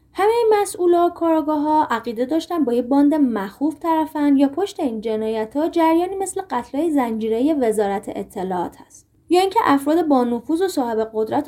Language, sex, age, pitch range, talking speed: Persian, female, 20-39, 220-325 Hz, 160 wpm